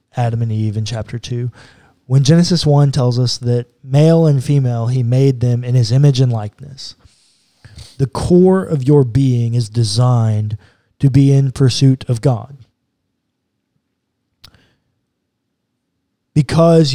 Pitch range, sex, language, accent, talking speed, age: 120-145 Hz, male, English, American, 130 wpm, 20-39